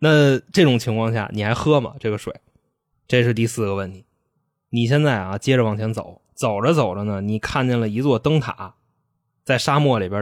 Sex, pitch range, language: male, 105-135 Hz, Chinese